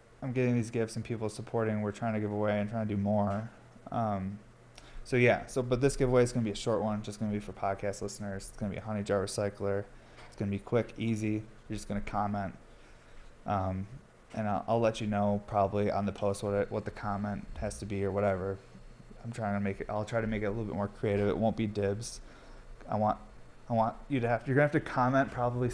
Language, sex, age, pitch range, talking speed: English, male, 20-39, 105-125 Hz, 250 wpm